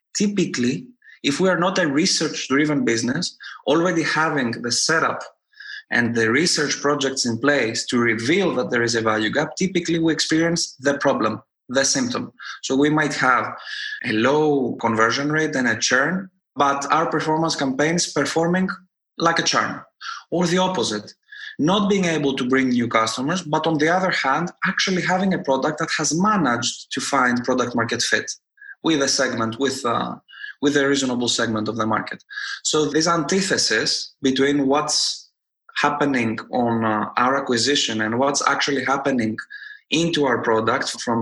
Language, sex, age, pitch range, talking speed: English, male, 20-39, 125-175 Hz, 160 wpm